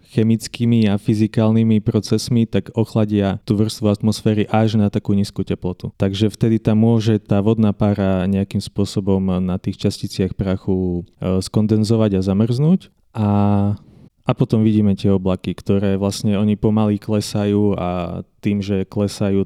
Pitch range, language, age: 100-110 Hz, Slovak, 20-39